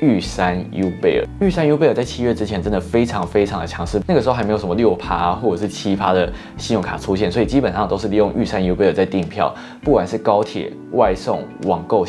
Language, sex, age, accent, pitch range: Chinese, male, 20-39, native, 90-115 Hz